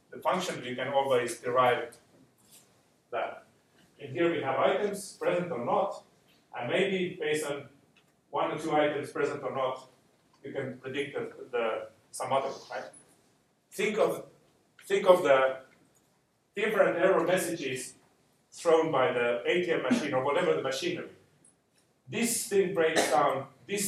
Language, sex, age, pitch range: English, male, 40-59, 140-180 Hz